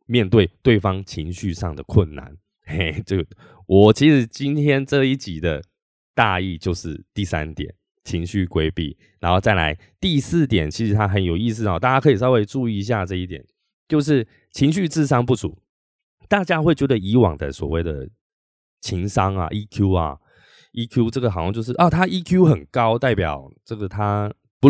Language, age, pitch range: Chinese, 20-39, 85-125 Hz